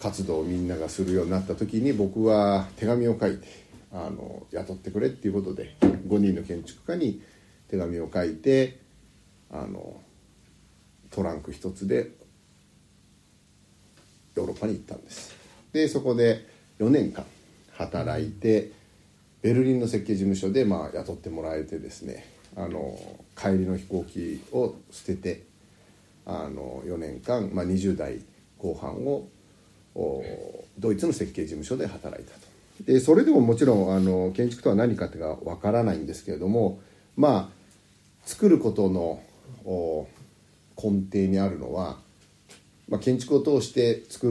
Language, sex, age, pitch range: Japanese, male, 60-79, 95-110 Hz